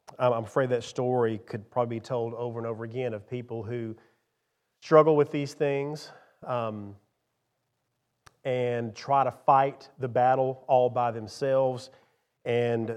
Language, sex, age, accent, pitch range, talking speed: English, male, 40-59, American, 120-145 Hz, 140 wpm